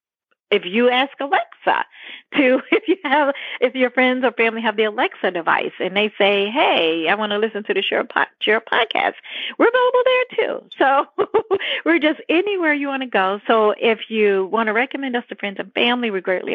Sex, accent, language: female, American, English